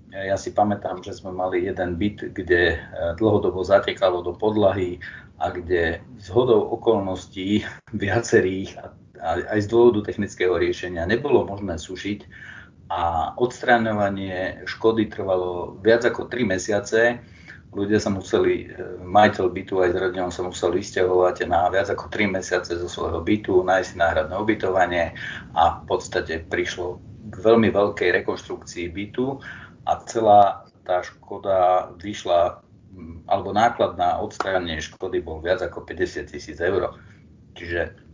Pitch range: 90-115 Hz